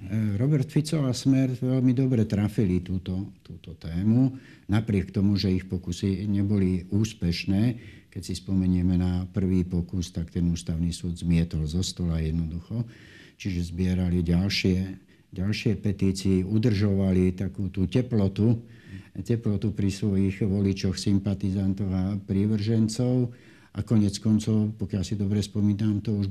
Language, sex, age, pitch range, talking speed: Slovak, male, 60-79, 90-105 Hz, 130 wpm